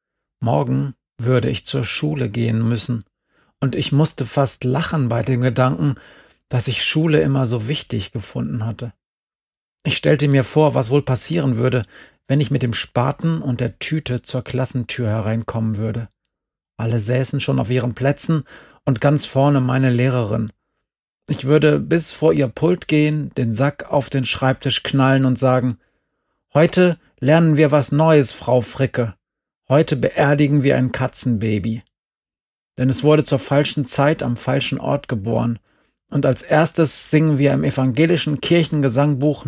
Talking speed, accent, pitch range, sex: 150 wpm, German, 120-145 Hz, male